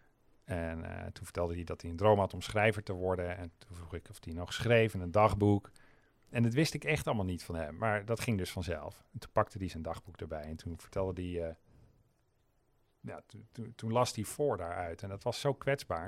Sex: male